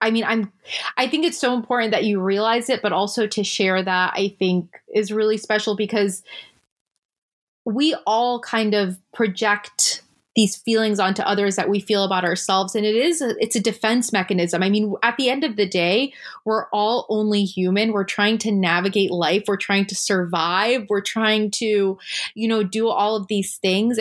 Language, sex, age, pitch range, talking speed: English, female, 20-39, 190-220 Hz, 190 wpm